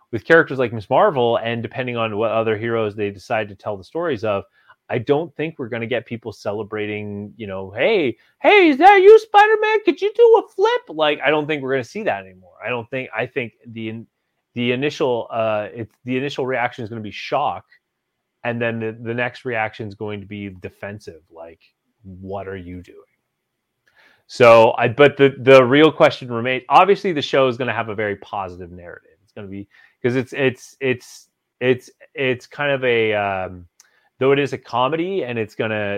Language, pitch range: English, 100-130 Hz